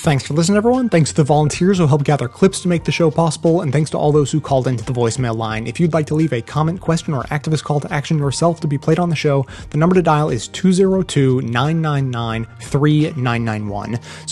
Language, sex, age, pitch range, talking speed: English, male, 30-49, 120-155 Hz, 225 wpm